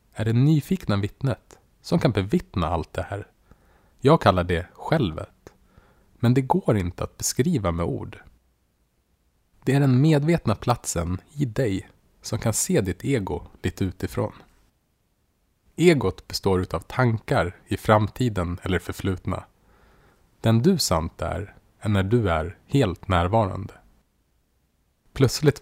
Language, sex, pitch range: Swedish, male, 90-125 Hz